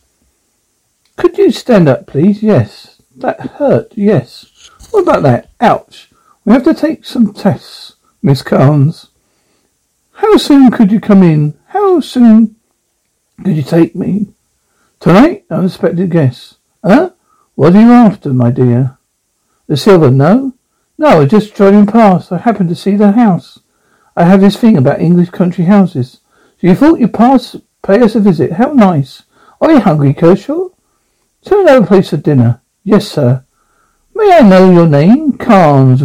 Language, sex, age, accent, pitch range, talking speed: English, male, 60-79, British, 155-235 Hz, 155 wpm